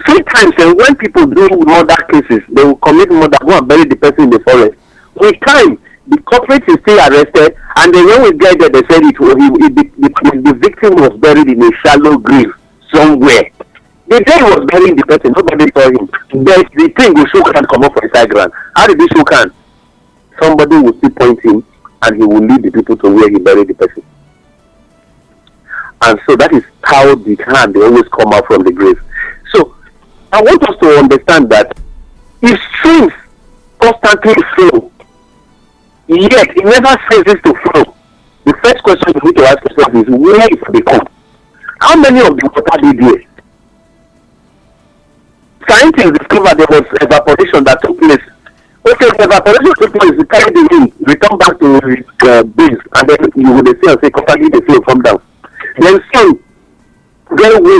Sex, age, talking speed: male, 50-69, 185 wpm